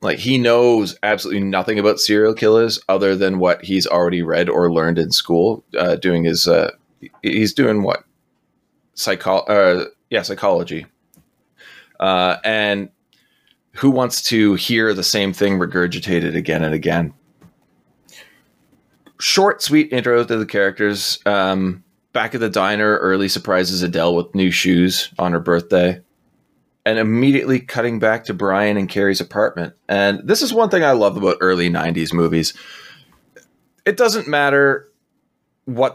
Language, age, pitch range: English, 20-39, 90-120 Hz